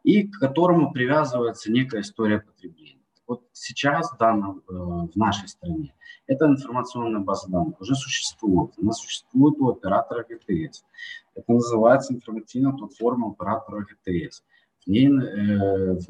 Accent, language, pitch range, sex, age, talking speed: native, Ukrainian, 100-125 Hz, male, 20-39, 130 wpm